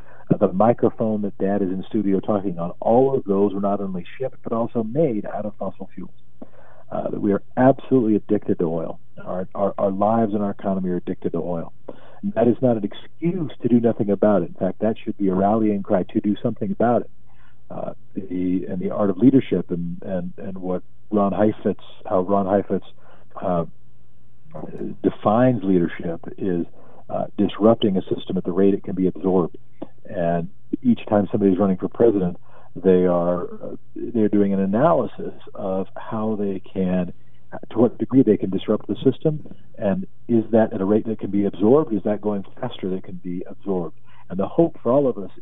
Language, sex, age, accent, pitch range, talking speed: English, male, 40-59, American, 95-115 Hz, 195 wpm